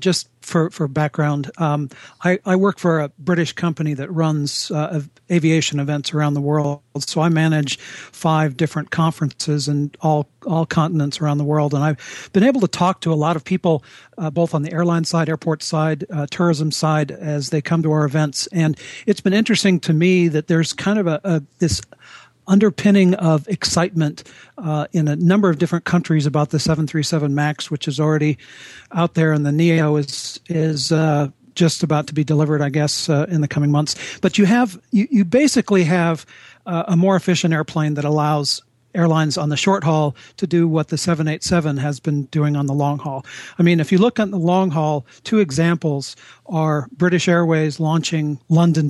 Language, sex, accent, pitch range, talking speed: English, male, American, 150-170 Hz, 195 wpm